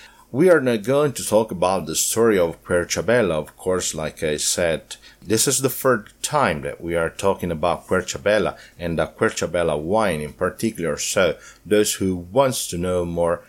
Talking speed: 180 wpm